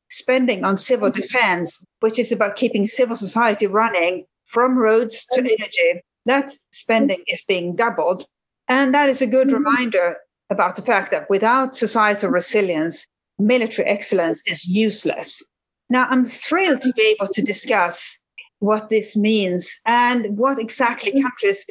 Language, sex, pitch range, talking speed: English, female, 190-250 Hz, 145 wpm